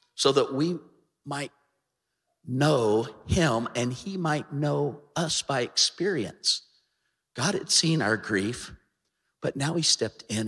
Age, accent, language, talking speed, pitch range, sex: 50-69, American, English, 130 wpm, 115-150 Hz, male